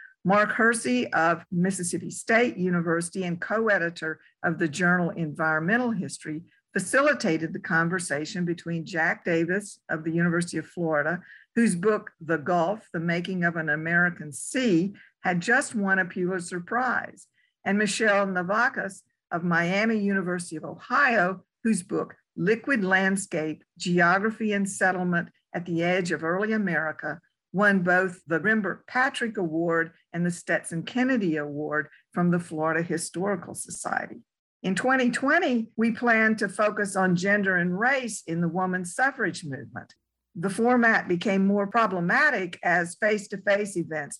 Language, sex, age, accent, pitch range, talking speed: English, female, 50-69, American, 170-210 Hz, 135 wpm